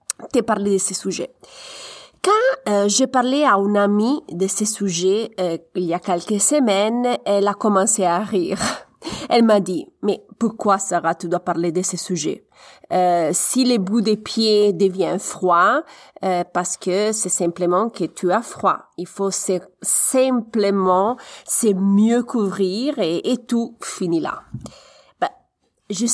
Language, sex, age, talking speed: French, female, 30-49, 160 wpm